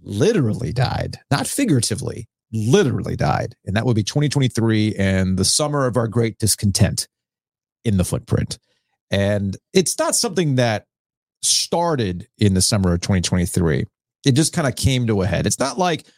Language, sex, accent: English, male, American